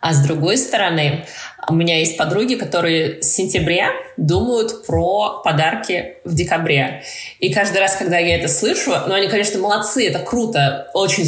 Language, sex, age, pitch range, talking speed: Russian, female, 20-39, 150-185 Hz, 160 wpm